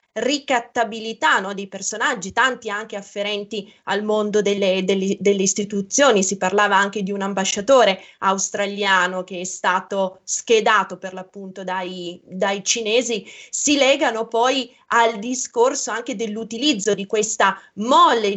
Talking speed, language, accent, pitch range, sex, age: 125 wpm, Italian, native, 195-235 Hz, female, 20-39